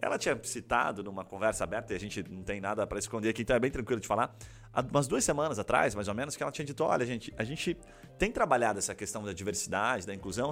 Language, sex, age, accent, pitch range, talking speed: Portuguese, male, 30-49, Brazilian, 105-165 Hz, 255 wpm